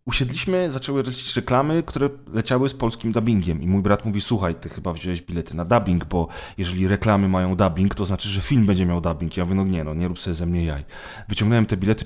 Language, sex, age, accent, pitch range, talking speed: Polish, male, 30-49, native, 95-120 Hz, 240 wpm